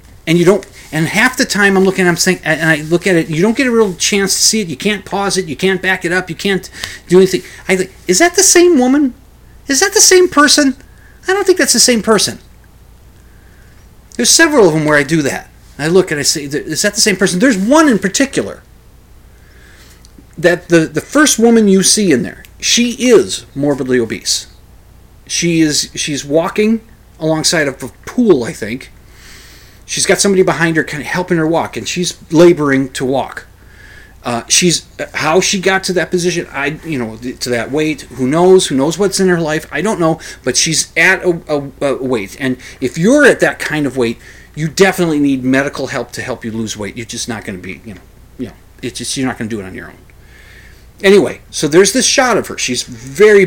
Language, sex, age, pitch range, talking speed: English, male, 30-49, 130-195 Hz, 220 wpm